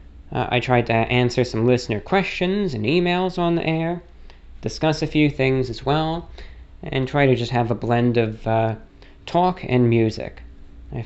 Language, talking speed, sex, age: English, 175 wpm, male, 20-39